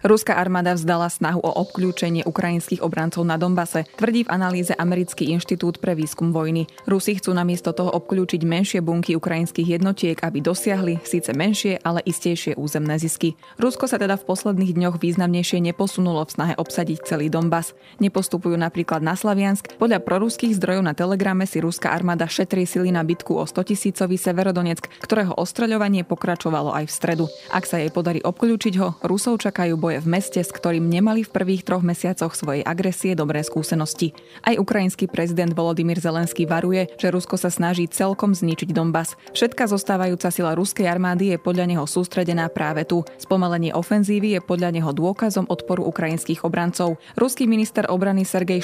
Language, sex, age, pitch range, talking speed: Slovak, female, 20-39, 165-190 Hz, 160 wpm